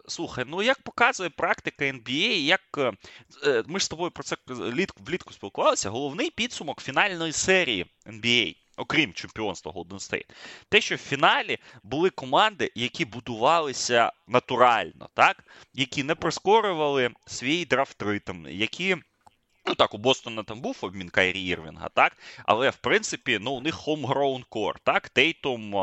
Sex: male